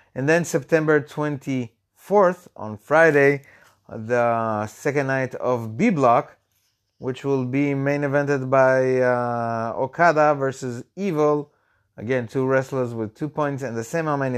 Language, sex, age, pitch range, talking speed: English, male, 30-49, 120-155 Hz, 140 wpm